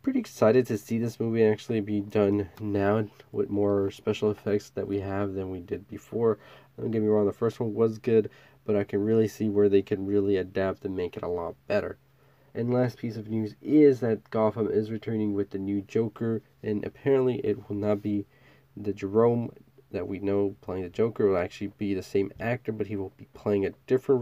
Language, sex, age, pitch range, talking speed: English, male, 20-39, 100-125 Hz, 220 wpm